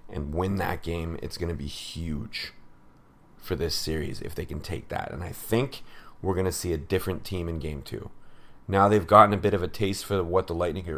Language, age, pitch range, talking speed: English, 30-49, 85-105 Hz, 230 wpm